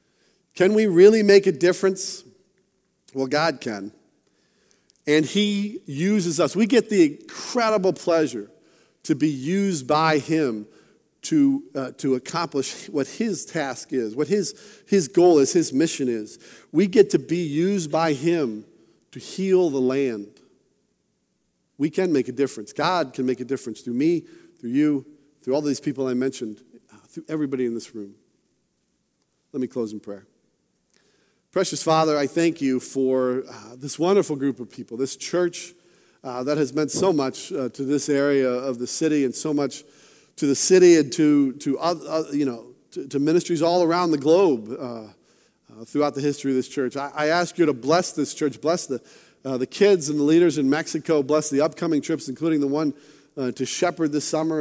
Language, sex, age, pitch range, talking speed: English, male, 50-69, 135-175 Hz, 180 wpm